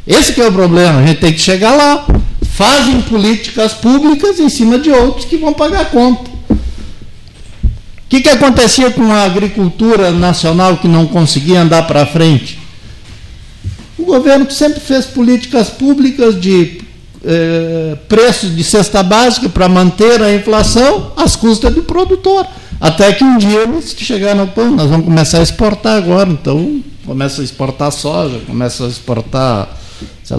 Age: 60-79